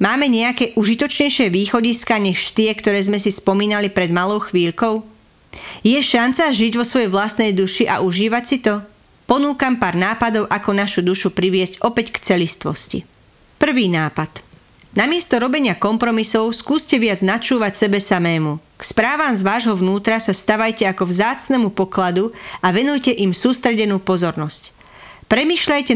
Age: 40-59